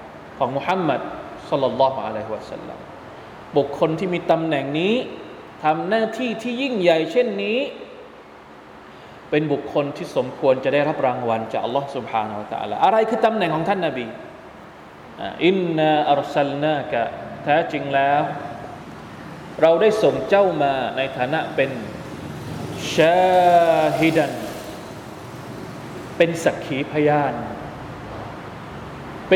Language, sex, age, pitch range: Thai, male, 20-39, 140-185 Hz